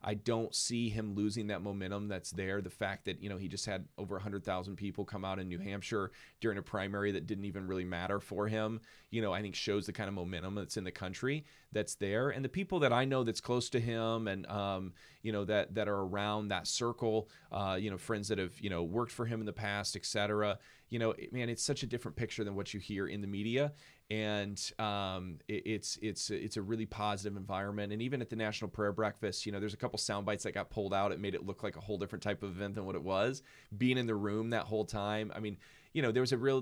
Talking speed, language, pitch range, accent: 260 wpm, English, 100-120 Hz, American